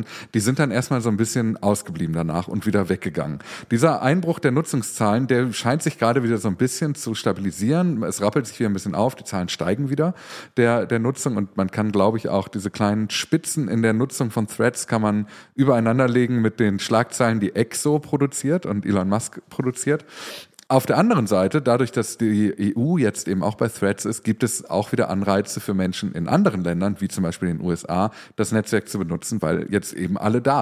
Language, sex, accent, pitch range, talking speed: German, male, German, 100-130 Hz, 210 wpm